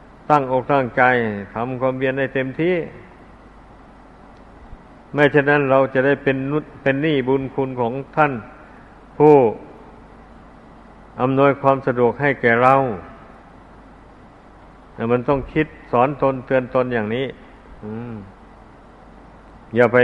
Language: Thai